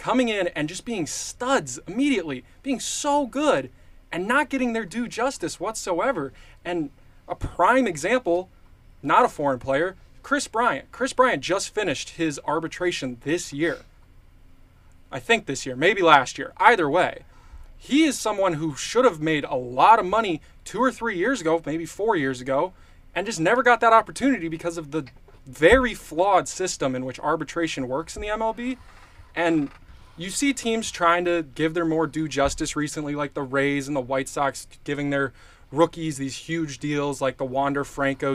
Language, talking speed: English, 175 wpm